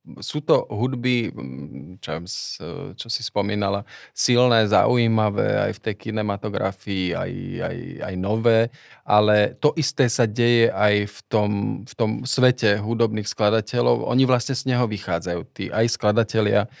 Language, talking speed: Slovak, 130 wpm